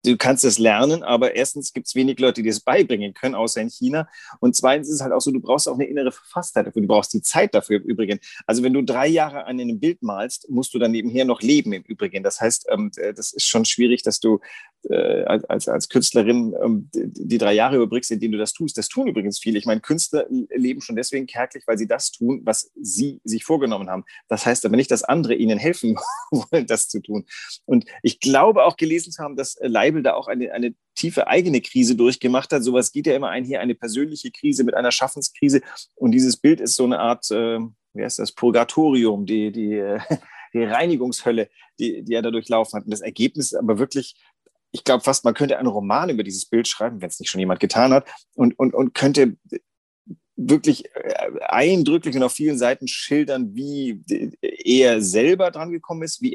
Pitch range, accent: 115-165 Hz, German